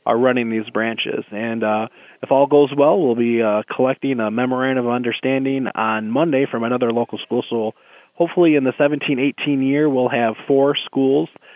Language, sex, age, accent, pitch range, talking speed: English, male, 20-39, American, 115-135 Hz, 175 wpm